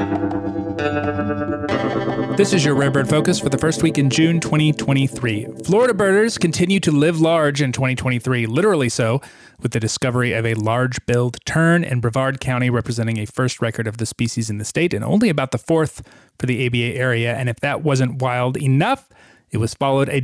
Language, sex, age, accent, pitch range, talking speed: English, male, 30-49, American, 120-150 Hz, 185 wpm